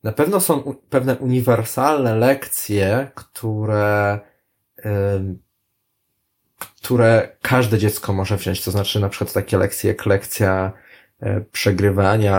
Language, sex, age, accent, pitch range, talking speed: Polish, male, 20-39, native, 100-120 Hz, 100 wpm